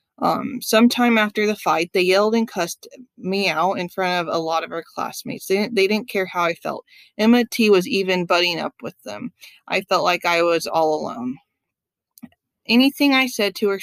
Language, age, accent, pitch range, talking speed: English, 20-39, American, 180-220 Hz, 200 wpm